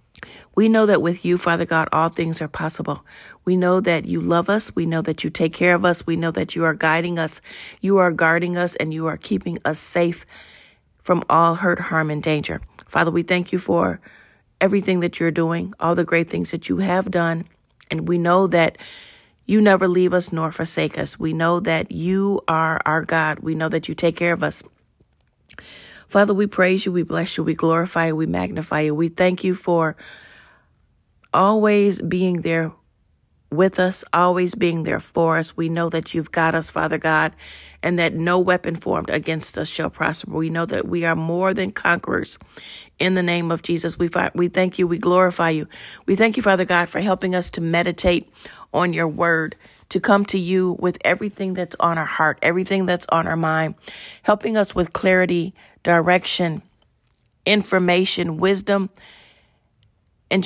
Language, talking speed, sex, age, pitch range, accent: English, 190 wpm, female, 40-59, 165-185 Hz, American